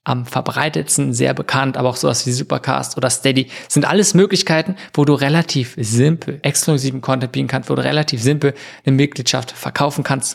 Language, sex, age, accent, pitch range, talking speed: German, male, 20-39, German, 125-150 Hz, 175 wpm